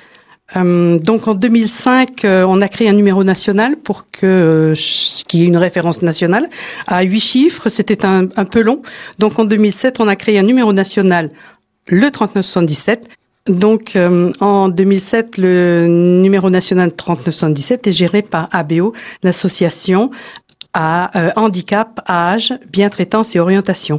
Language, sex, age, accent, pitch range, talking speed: French, female, 50-69, French, 175-225 Hz, 150 wpm